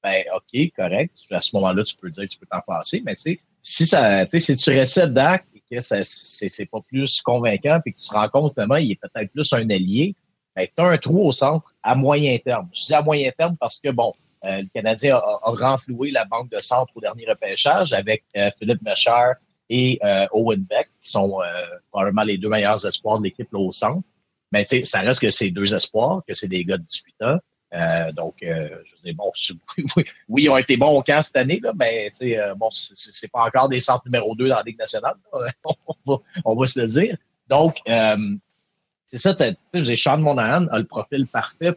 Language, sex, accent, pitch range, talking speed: French, male, Canadian, 110-160 Hz, 235 wpm